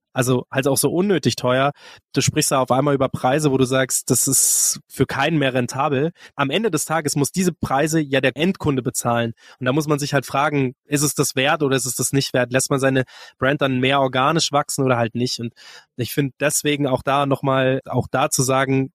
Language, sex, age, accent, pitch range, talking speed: German, male, 20-39, German, 130-150 Hz, 230 wpm